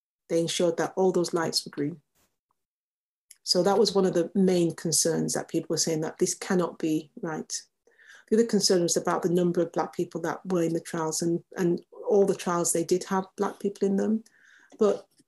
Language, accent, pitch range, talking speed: English, British, 175-210 Hz, 210 wpm